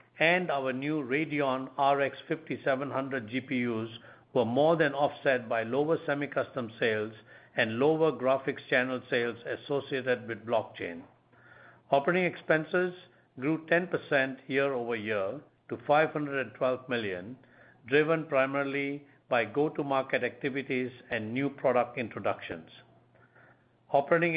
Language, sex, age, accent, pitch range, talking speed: English, male, 50-69, Indian, 125-155 Hz, 100 wpm